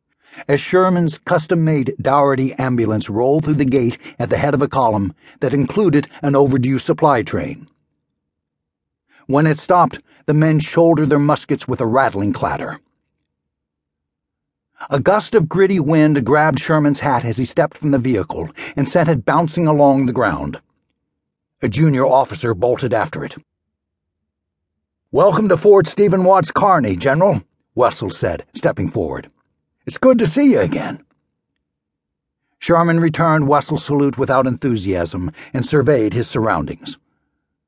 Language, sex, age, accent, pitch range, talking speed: English, male, 60-79, American, 125-160 Hz, 140 wpm